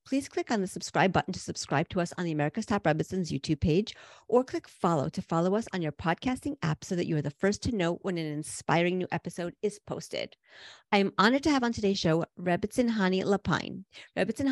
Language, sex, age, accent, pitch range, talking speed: English, female, 40-59, American, 175-230 Hz, 225 wpm